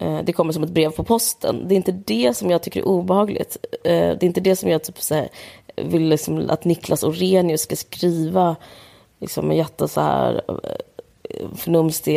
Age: 20-39